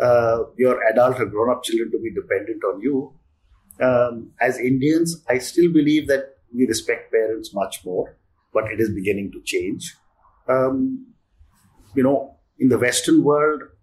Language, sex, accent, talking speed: English, male, Indian, 155 wpm